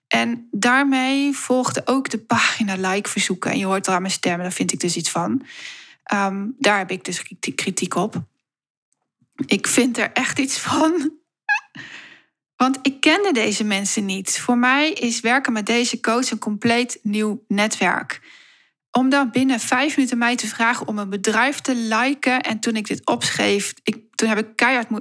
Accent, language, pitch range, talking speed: Dutch, Dutch, 210-260 Hz, 175 wpm